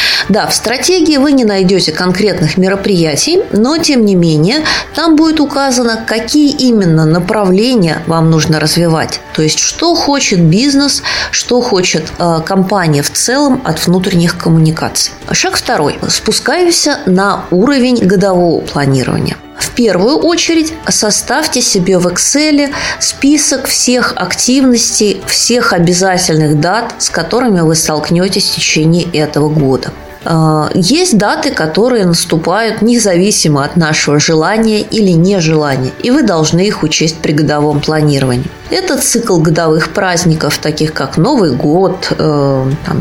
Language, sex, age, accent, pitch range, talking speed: Russian, female, 20-39, native, 155-220 Hz, 125 wpm